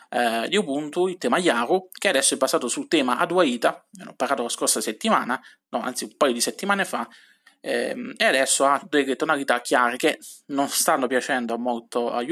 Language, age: Italian, 20-39